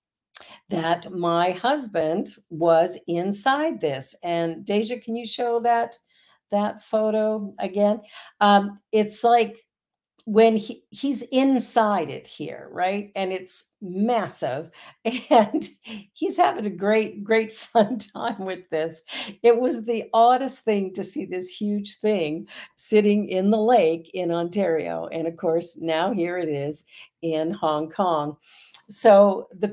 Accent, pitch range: American, 160-220 Hz